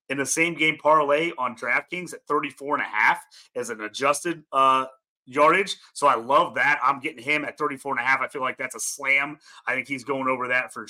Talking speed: 230 wpm